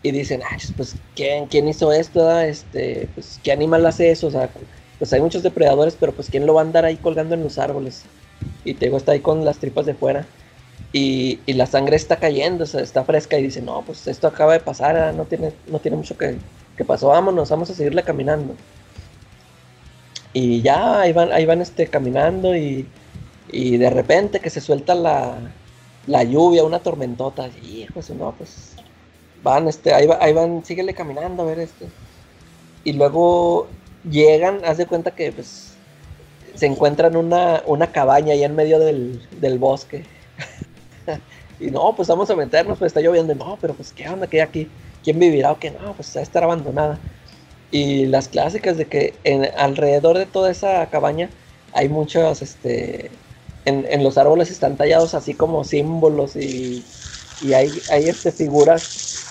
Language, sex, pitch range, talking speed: Spanish, male, 135-165 Hz, 185 wpm